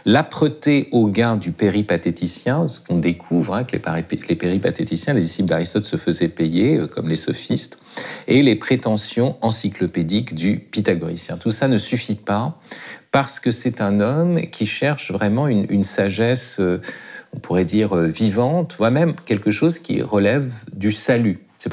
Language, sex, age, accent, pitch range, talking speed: French, male, 50-69, French, 90-120 Hz, 155 wpm